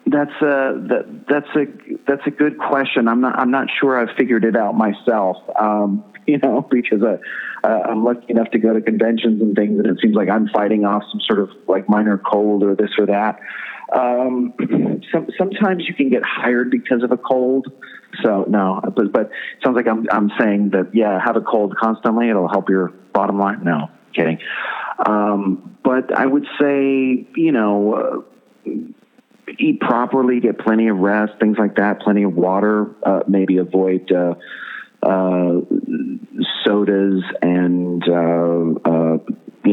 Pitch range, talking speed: 100-125 Hz, 175 wpm